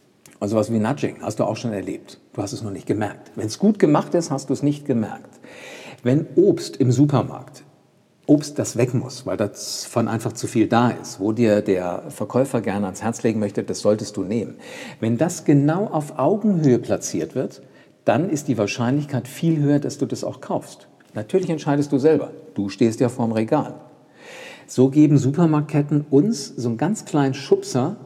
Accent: German